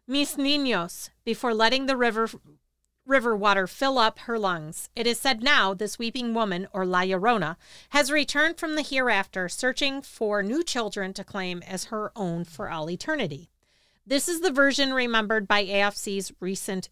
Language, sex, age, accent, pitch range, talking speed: English, female, 40-59, American, 190-260 Hz, 165 wpm